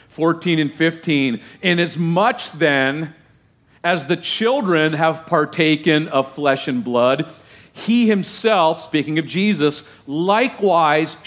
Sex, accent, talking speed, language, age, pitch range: male, American, 115 wpm, English, 50-69, 120-170 Hz